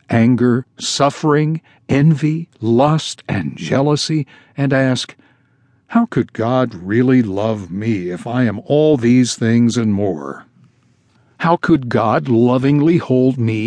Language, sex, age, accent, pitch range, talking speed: English, male, 60-79, American, 120-150 Hz, 125 wpm